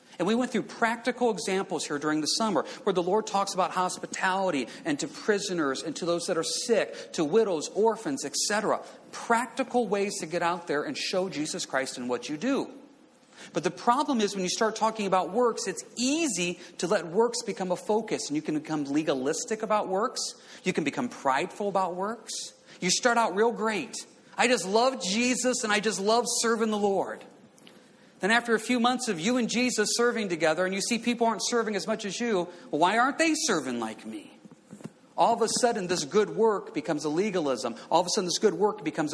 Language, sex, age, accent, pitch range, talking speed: English, male, 40-59, American, 180-240 Hz, 205 wpm